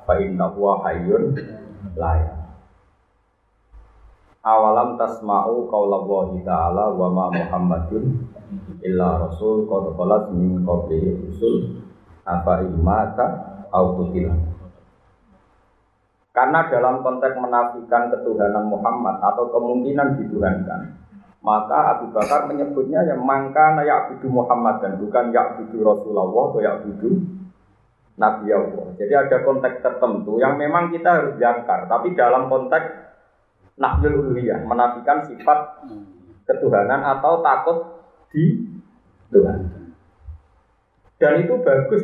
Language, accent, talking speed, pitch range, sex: Indonesian, native, 85 wpm, 95-135 Hz, male